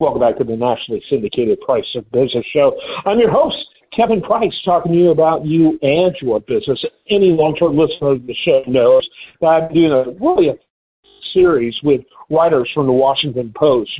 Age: 50-69